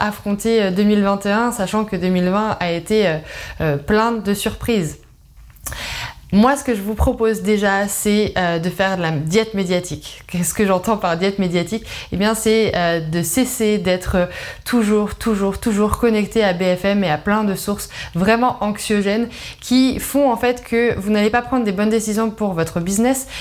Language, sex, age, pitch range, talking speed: French, female, 20-39, 190-230 Hz, 165 wpm